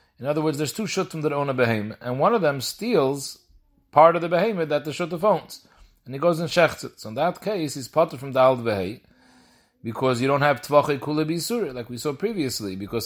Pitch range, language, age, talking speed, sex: 125-160 Hz, English, 40-59, 230 wpm, male